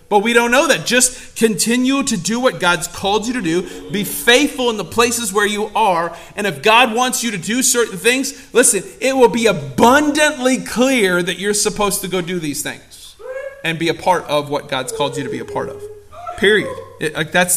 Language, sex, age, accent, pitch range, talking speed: English, male, 40-59, American, 175-255 Hz, 210 wpm